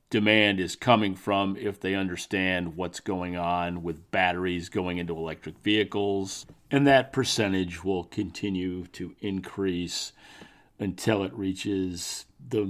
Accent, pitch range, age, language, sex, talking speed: American, 90-100 Hz, 50-69, English, male, 130 wpm